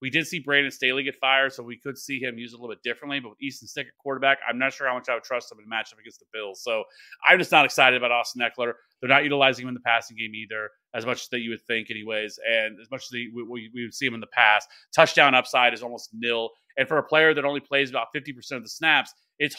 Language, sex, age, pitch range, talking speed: English, male, 30-49, 120-140 Hz, 280 wpm